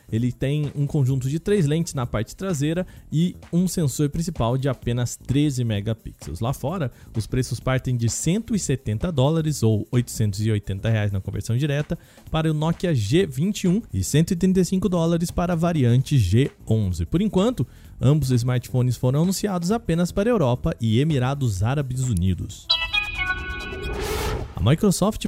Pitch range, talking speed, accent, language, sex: 120-175 Hz, 140 wpm, Brazilian, Portuguese, male